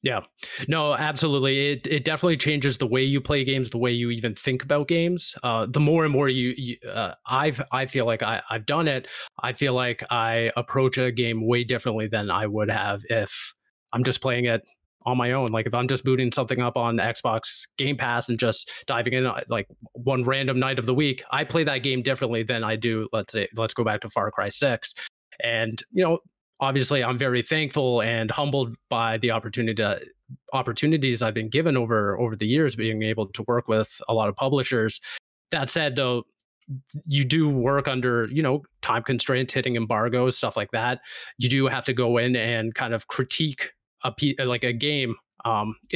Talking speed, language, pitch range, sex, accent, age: 205 wpm, English, 115-140 Hz, male, American, 20-39